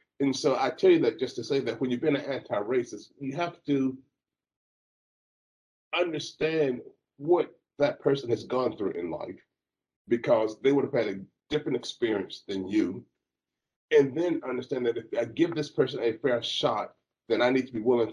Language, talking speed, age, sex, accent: English, 180 wpm, 30-49, male, American